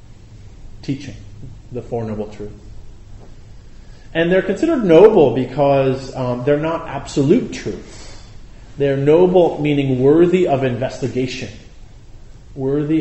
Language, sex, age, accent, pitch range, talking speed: English, male, 30-49, American, 110-135 Hz, 100 wpm